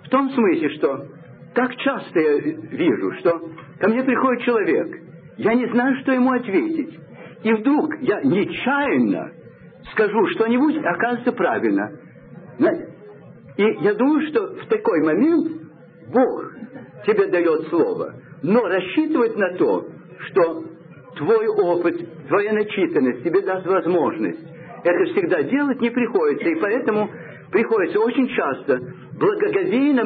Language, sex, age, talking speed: Russian, male, 60-79, 120 wpm